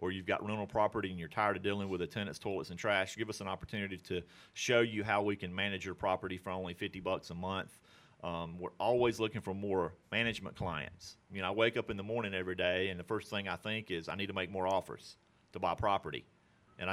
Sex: male